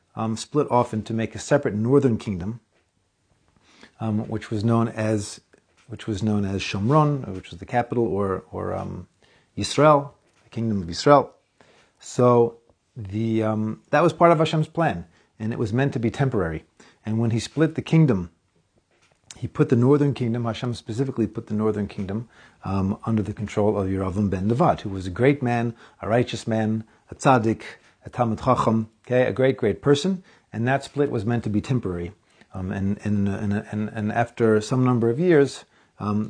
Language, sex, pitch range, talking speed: English, male, 105-130 Hz, 180 wpm